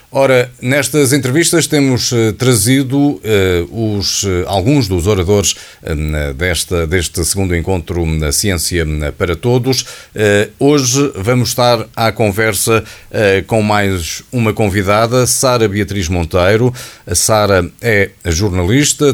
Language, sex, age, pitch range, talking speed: Portuguese, male, 50-69, 90-125 Hz, 115 wpm